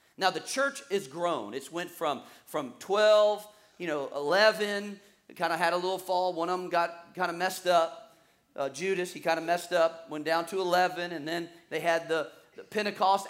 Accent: American